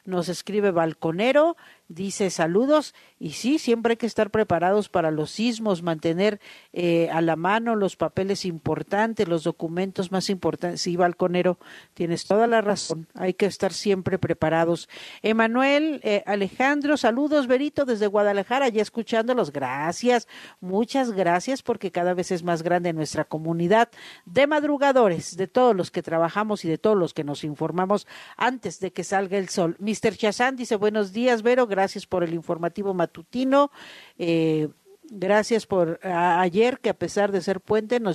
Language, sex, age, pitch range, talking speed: Spanish, female, 50-69, 175-235 Hz, 160 wpm